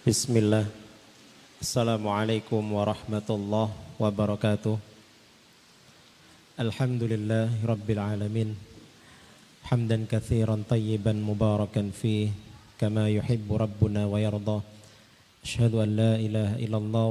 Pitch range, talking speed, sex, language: 110-120 Hz, 65 wpm, male, Indonesian